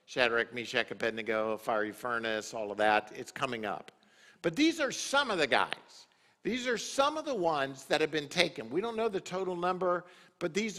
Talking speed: 200 wpm